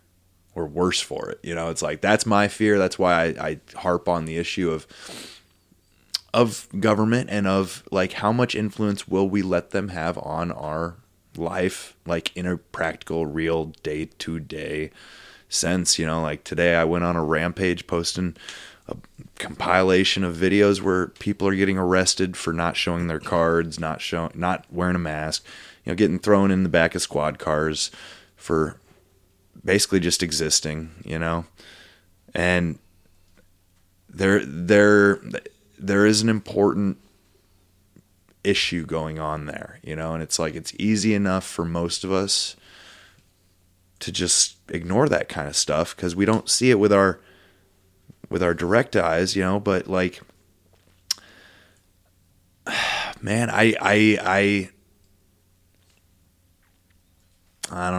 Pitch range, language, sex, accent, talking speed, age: 85-95 Hz, English, male, American, 145 wpm, 20-39